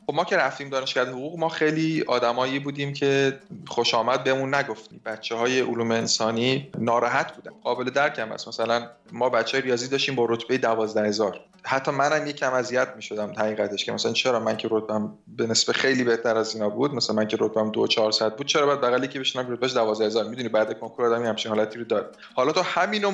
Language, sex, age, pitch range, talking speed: Persian, male, 30-49, 120-160 Hz, 205 wpm